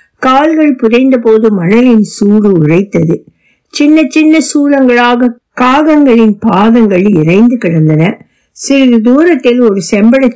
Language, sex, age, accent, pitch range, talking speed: Tamil, female, 60-79, native, 180-245 Hz, 85 wpm